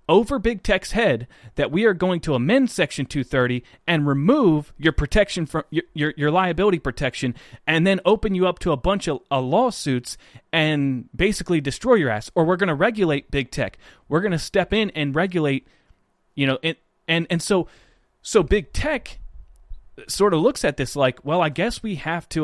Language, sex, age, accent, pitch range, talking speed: English, male, 30-49, American, 140-200 Hz, 195 wpm